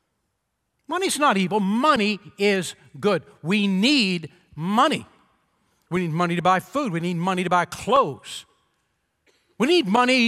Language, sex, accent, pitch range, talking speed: English, male, American, 165-230 Hz, 140 wpm